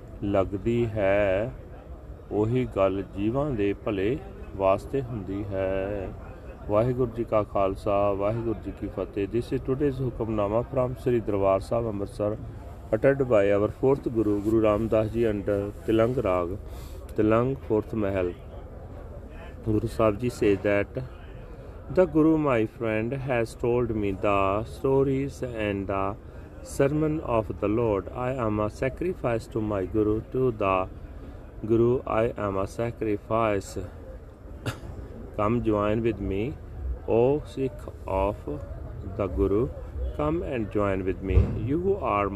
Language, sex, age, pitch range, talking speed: Punjabi, male, 30-49, 95-120 Hz, 125 wpm